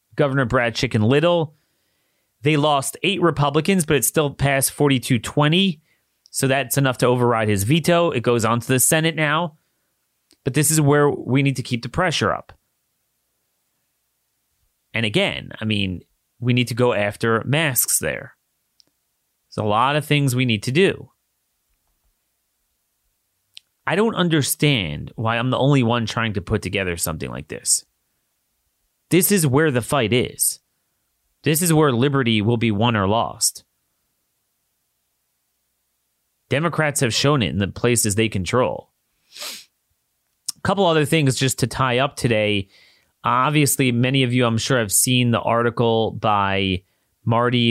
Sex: male